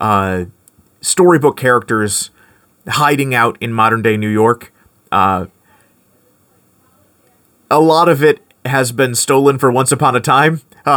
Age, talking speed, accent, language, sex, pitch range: 30-49, 120 wpm, American, English, male, 105-135 Hz